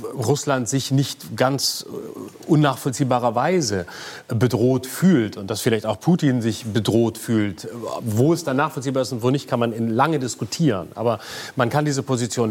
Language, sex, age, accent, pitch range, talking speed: German, male, 30-49, German, 120-155 Hz, 155 wpm